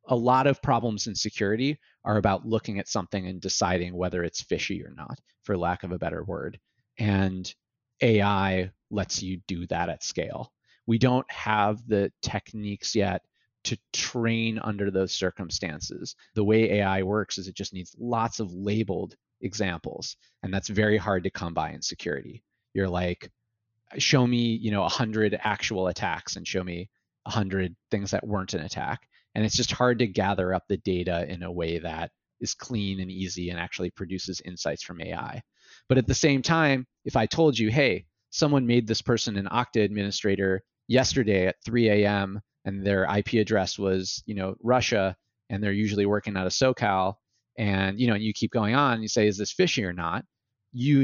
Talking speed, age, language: 185 wpm, 30-49, English